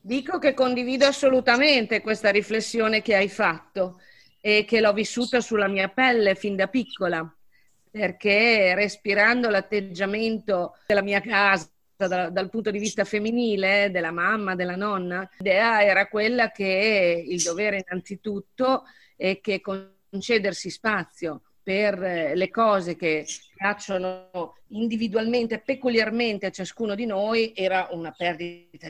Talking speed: 125 wpm